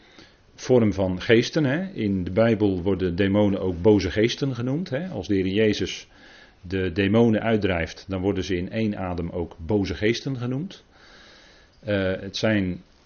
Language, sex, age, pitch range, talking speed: Dutch, male, 40-59, 90-110 Hz, 155 wpm